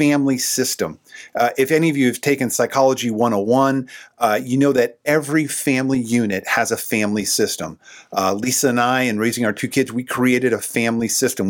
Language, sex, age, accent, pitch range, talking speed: English, male, 50-69, American, 115-145 Hz, 190 wpm